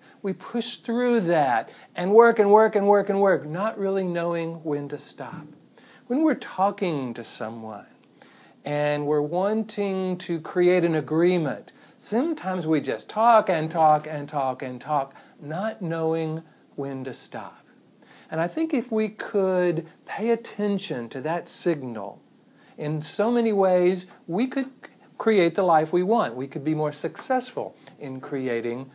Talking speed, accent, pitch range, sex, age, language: 155 wpm, American, 150-210 Hz, male, 50-69, English